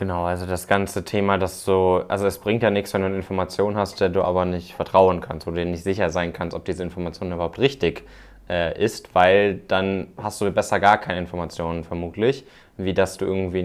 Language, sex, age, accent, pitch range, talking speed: German, male, 20-39, German, 90-105 Hz, 220 wpm